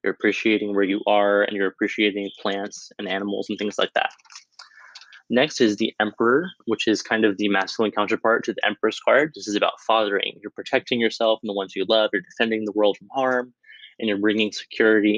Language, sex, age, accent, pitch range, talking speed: English, male, 20-39, American, 100-110 Hz, 205 wpm